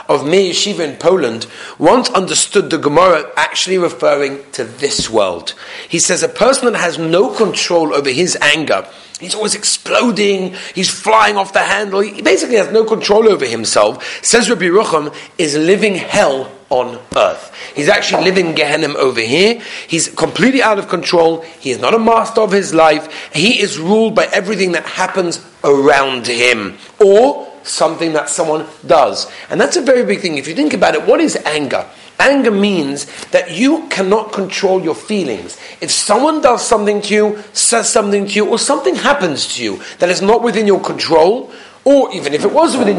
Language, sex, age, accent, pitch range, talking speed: English, male, 40-59, British, 160-225 Hz, 180 wpm